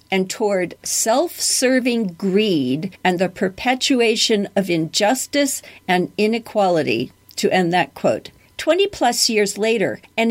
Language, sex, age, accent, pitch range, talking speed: English, female, 50-69, American, 185-245 Hz, 110 wpm